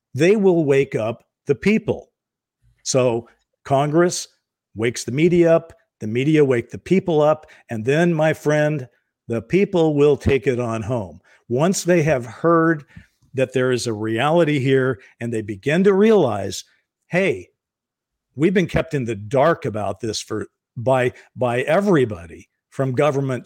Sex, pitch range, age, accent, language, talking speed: male, 125-165 Hz, 50-69, American, English, 150 wpm